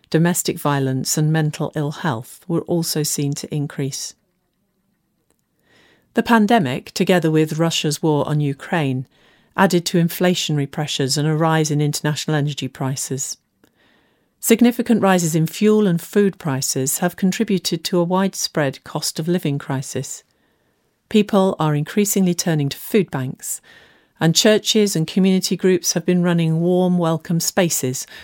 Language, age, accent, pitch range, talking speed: English, 50-69, British, 150-185 Hz, 130 wpm